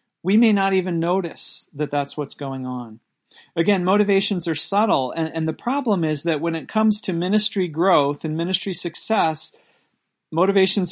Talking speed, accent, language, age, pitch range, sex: 165 wpm, American, English, 40-59, 150-190 Hz, male